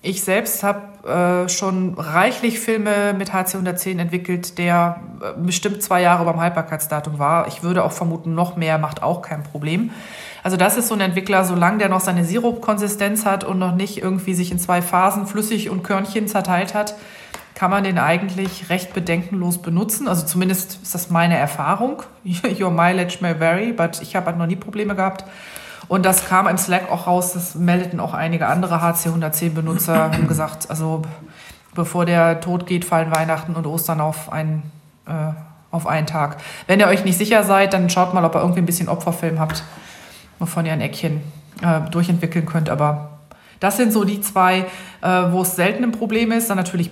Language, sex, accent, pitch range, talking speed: German, female, German, 170-195 Hz, 190 wpm